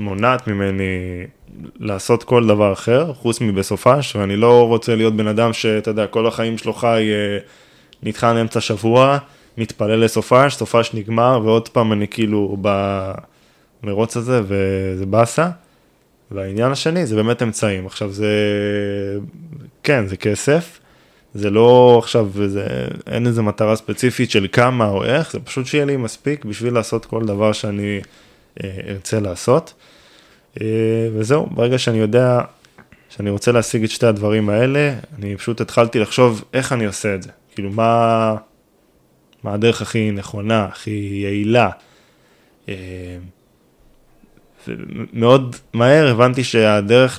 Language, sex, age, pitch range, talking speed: Hebrew, male, 20-39, 105-120 Hz, 130 wpm